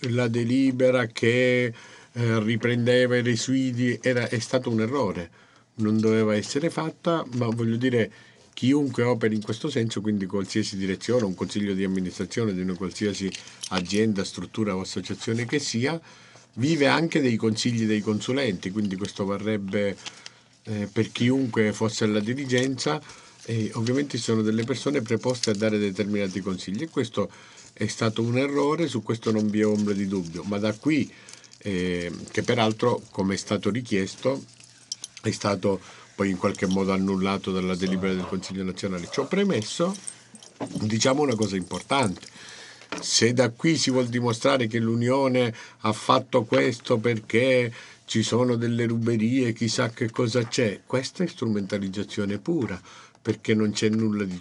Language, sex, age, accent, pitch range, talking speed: Italian, male, 50-69, native, 100-125 Hz, 150 wpm